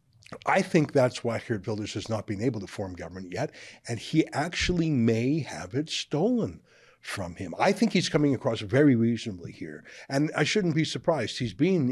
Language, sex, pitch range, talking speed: English, male, 115-145 Hz, 190 wpm